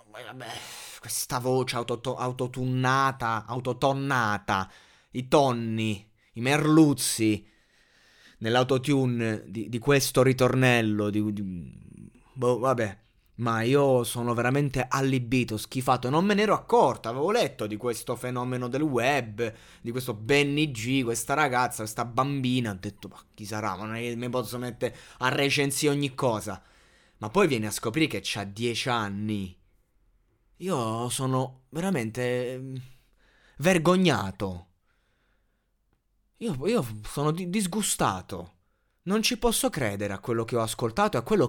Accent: native